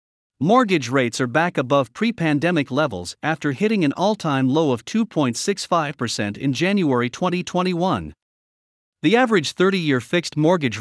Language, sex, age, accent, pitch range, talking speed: English, male, 50-69, American, 125-180 Hz, 120 wpm